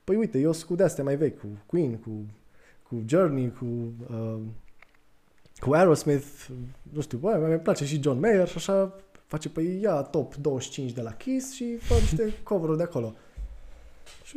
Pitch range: 125-175 Hz